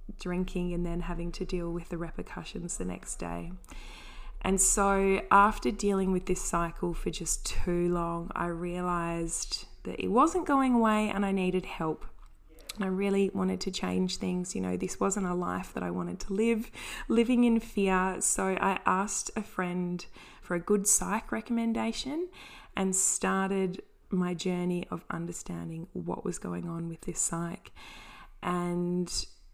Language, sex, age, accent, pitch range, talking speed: English, female, 20-39, Australian, 170-195 Hz, 160 wpm